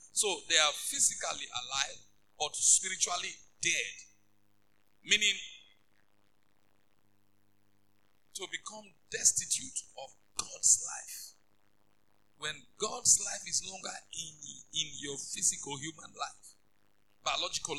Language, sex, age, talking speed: English, male, 50-69, 90 wpm